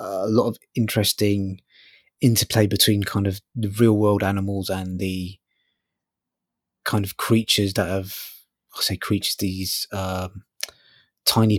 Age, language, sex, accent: 20-39, English, male, British